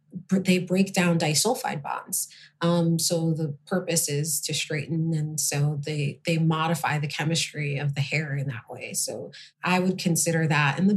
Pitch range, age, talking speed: 155-205 Hz, 30-49, 175 wpm